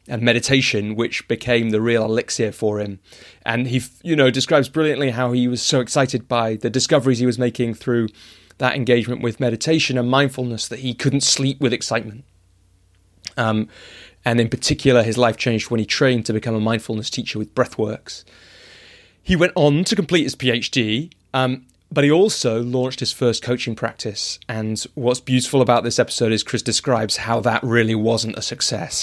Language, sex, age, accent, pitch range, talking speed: English, male, 30-49, British, 110-130 Hz, 180 wpm